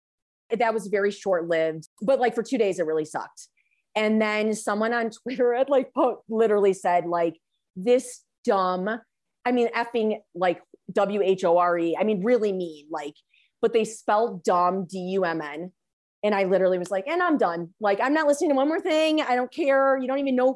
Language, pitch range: English, 180-260 Hz